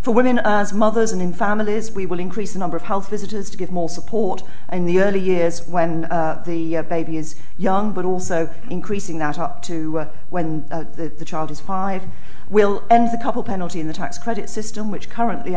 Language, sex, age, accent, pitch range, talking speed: English, female, 40-59, British, 170-205 Hz, 215 wpm